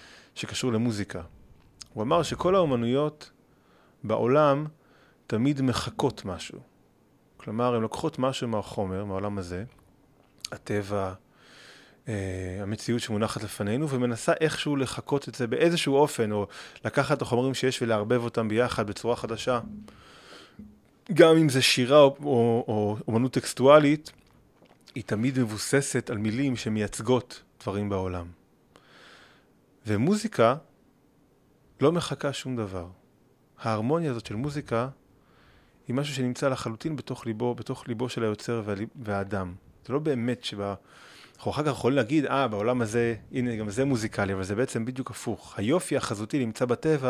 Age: 30-49